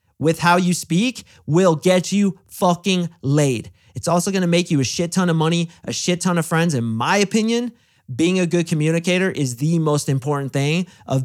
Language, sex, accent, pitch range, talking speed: English, male, American, 130-170 Hz, 195 wpm